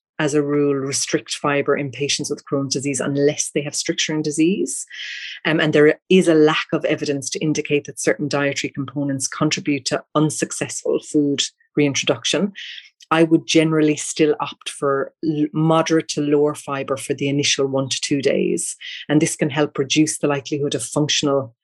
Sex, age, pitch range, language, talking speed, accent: female, 30-49, 140-155 Hz, English, 170 wpm, Irish